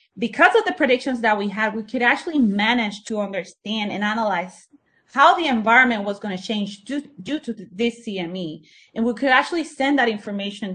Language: English